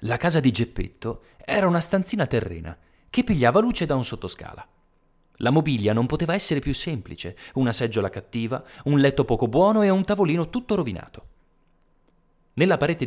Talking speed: 160 wpm